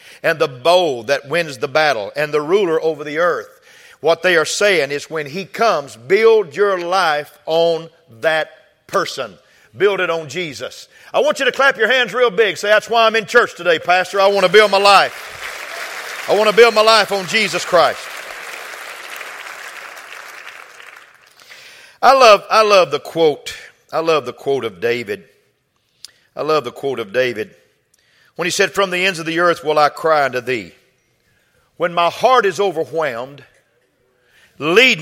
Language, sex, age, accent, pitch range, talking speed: English, male, 50-69, American, 155-200 Hz, 170 wpm